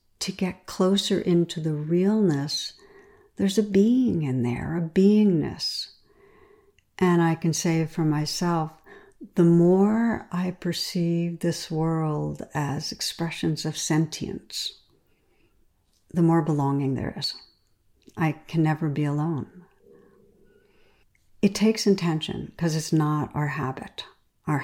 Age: 60-79